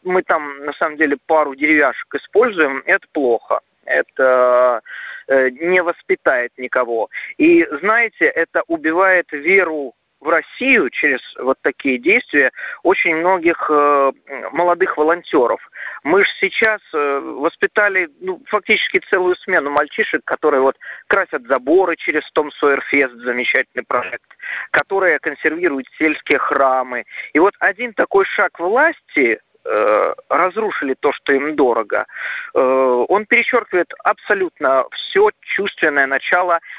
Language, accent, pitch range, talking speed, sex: Russian, native, 145-225 Hz, 115 wpm, male